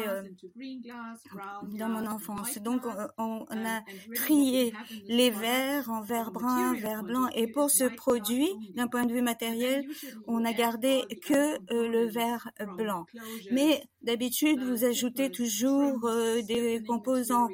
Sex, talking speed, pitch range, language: female, 125 wpm, 220-255 Hz, French